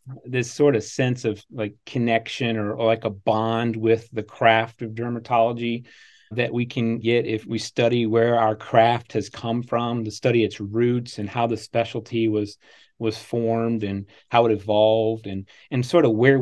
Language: English